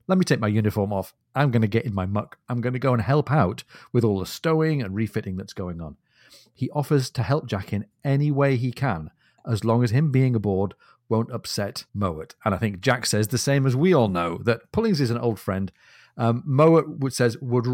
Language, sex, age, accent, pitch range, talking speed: English, male, 40-59, British, 110-145 Hz, 235 wpm